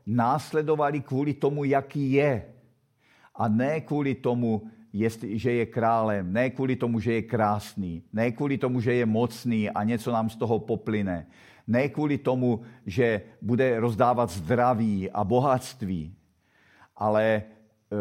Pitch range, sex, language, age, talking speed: 105-125 Hz, male, Czech, 50-69, 135 wpm